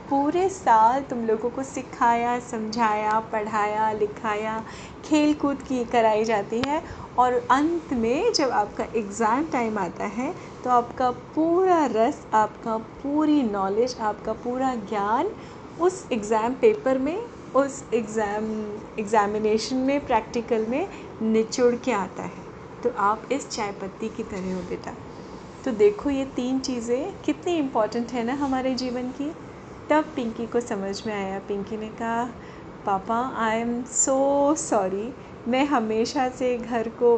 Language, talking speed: Hindi, 140 wpm